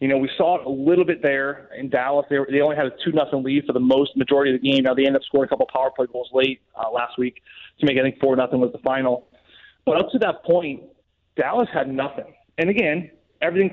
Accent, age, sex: American, 30-49, male